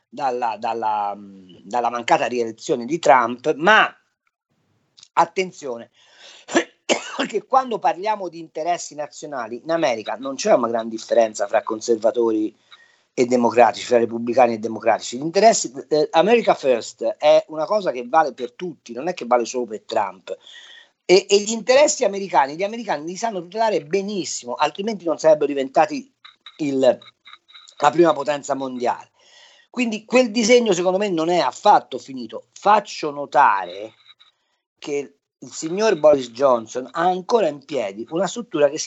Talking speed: 140 wpm